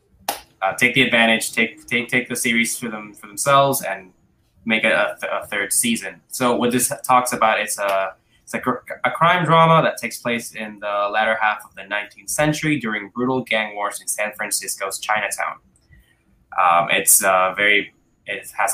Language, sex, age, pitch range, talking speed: English, male, 10-29, 100-125 Hz, 190 wpm